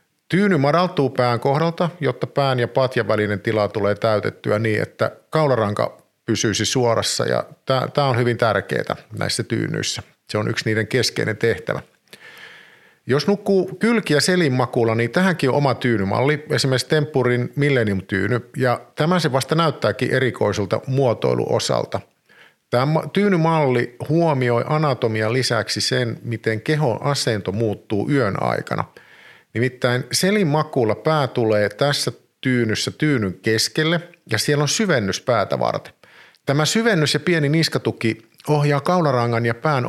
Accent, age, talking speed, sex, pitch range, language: native, 50-69, 130 wpm, male, 115-155 Hz, Finnish